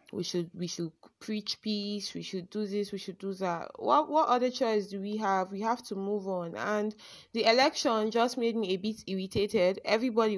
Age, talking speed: 20-39, 210 wpm